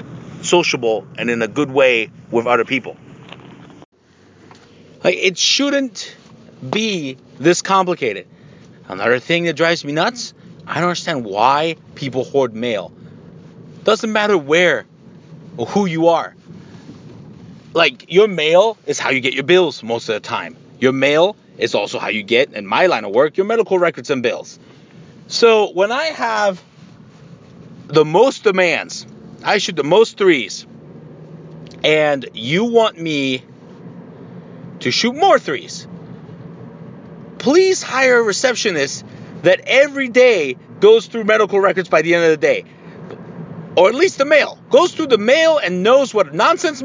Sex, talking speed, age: male, 145 wpm, 30-49